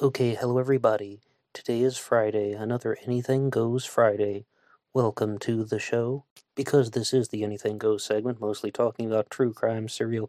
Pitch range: 105-125 Hz